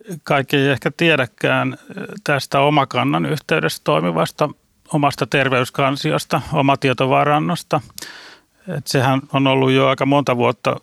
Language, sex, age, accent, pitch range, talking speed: Finnish, male, 30-49, native, 125-140 Hz, 105 wpm